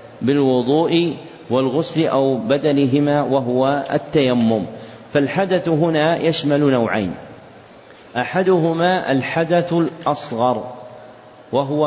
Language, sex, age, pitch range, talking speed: Arabic, male, 50-69, 130-160 Hz, 70 wpm